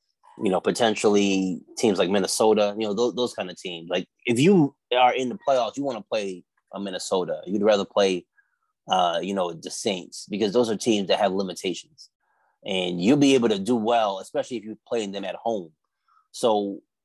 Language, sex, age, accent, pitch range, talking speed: English, male, 30-49, American, 105-135 Hz, 195 wpm